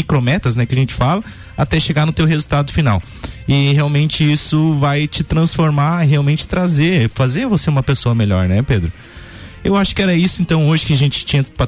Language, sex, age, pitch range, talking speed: Portuguese, male, 20-39, 120-160 Hz, 200 wpm